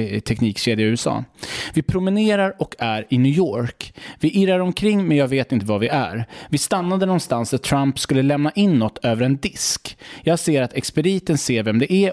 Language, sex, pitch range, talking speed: English, male, 120-155 Hz, 200 wpm